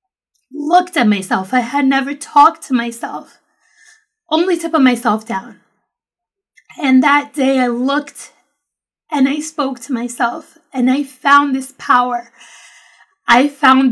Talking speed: 135 wpm